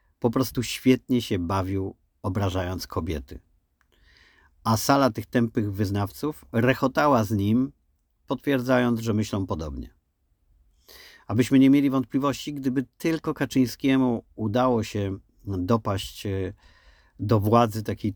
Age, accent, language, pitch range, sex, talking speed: 50-69, native, Polish, 95-120 Hz, male, 105 wpm